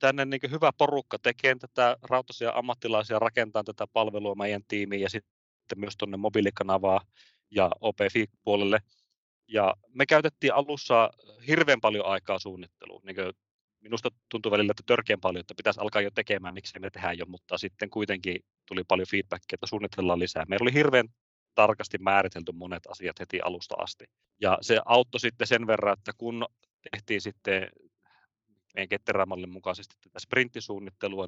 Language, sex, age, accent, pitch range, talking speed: Finnish, male, 30-49, native, 95-115 Hz, 150 wpm